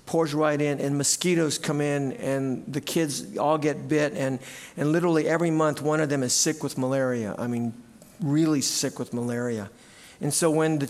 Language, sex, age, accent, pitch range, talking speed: English, male, 50-69, American, 130-155 Hz, 195 wpm